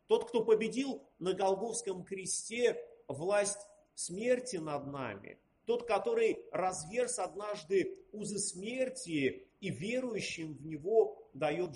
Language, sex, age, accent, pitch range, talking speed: Russian, male, 40-59, native, 165-245 Hz, 105 wpm